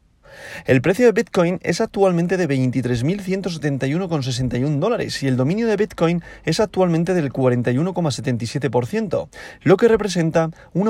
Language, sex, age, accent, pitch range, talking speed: Spanish, male, 30-49, Spanish, 135-190 Hz, 120 wpm